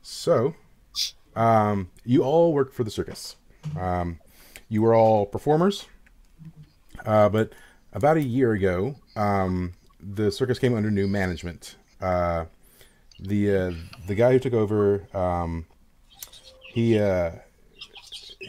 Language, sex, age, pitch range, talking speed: English, male, 30-49, 95-115 Hz, 120 wpm